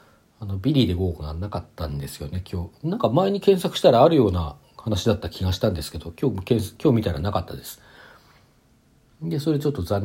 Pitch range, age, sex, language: 85-120 Hz, 40-59, male, Japanese